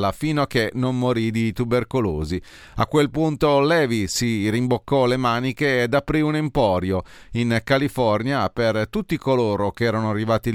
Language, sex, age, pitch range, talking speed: Italian, male, 40-59, 105-135 Hz, 155 wpm